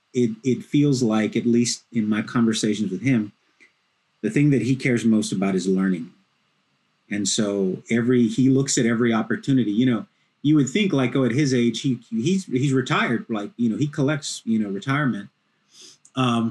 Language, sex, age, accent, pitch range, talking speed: English, male, 30-49, American, 115-140 Hz, 185 wpm